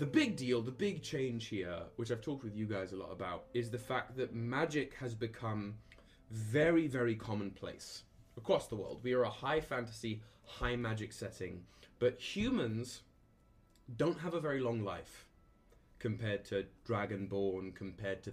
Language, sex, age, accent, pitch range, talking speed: English, male, 20-39, British, 100-125 Hz, 165 wpm